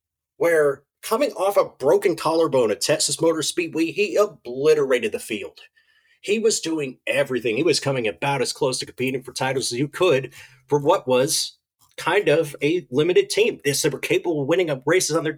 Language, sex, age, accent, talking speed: English, male, 30-49, American, 190 wpm